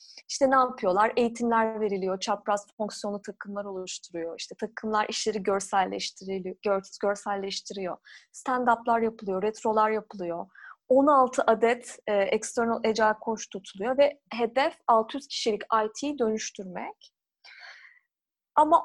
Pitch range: 215-295 Hz